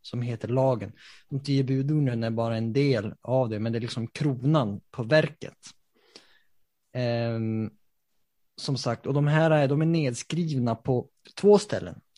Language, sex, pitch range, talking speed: Swedish, male, 115-150 Hz, 155 wpm